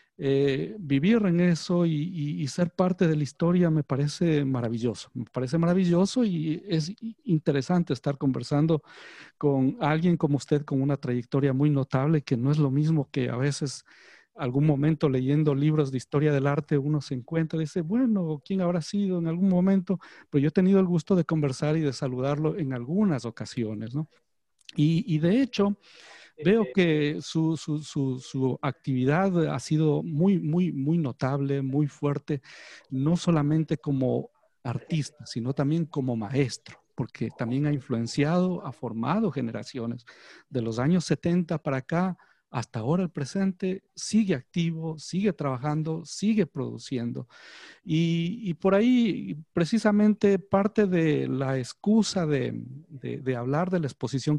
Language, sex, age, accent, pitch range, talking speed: Spanish, male, 50-69, Mexican, 135-170 Hz, 155 wpm